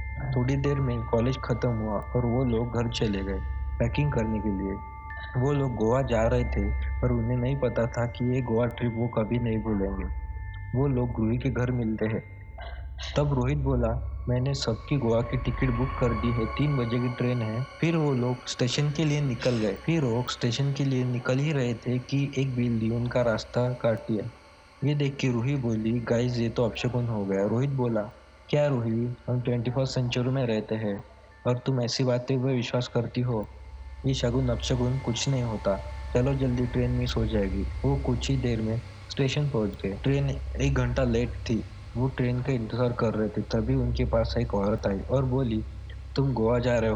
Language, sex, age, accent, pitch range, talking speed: Hindi, male, 20-39, native, 110-130 Hz, 200 wpm